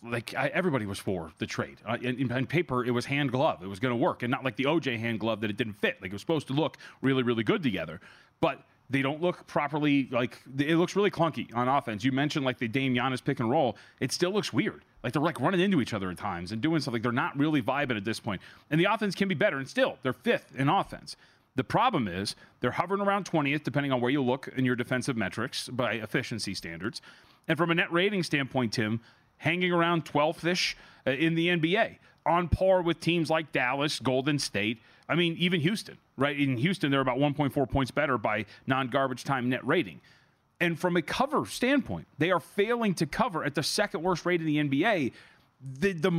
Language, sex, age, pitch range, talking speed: English, male, 30-49, 125-170 Hz, 230 wpm